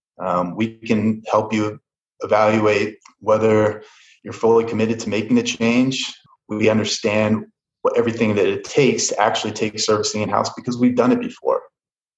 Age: 30-49